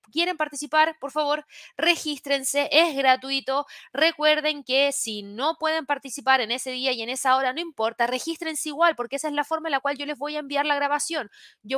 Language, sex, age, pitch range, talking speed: Spanish, female, 20-39, 235-300 Hz, 205 wpm